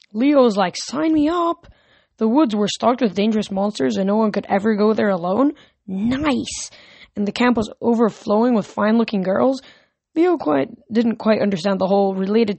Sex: female